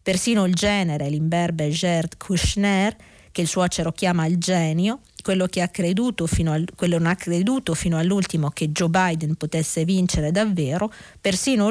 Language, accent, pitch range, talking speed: Italian, native, 165-220 Hz, 155 wpm